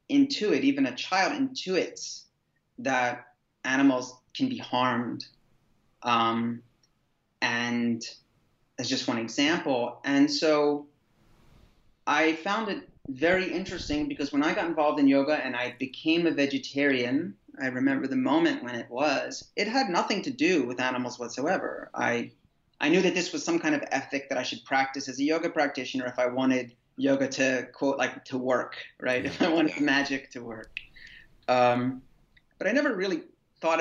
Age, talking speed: 30-49, 160 wpm